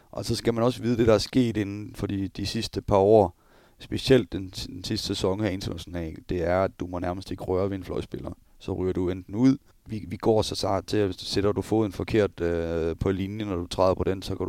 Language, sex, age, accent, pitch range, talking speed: Danish, male, 30-49, native, 90-105 Hz, 270 wpm